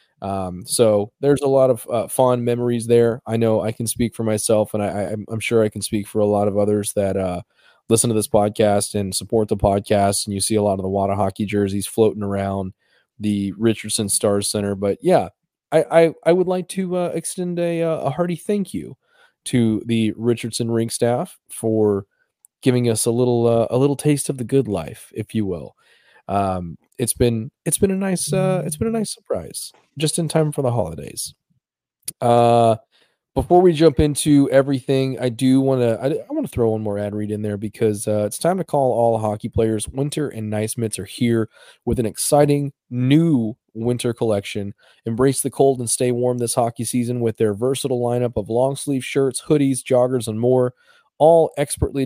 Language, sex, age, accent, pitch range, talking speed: English, male, 20-39, American, 105-135 Hz, 205 wpm